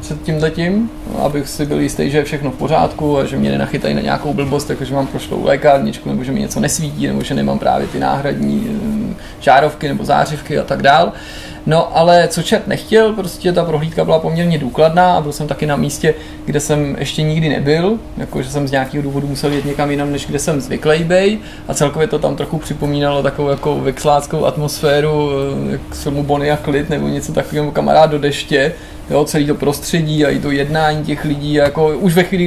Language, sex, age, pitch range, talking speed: Czech, male, 20-39, 145-160 Hz, 205 wpm